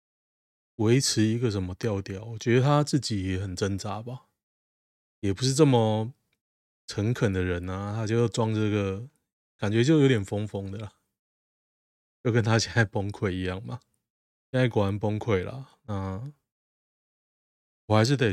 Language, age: Chinese, 20-39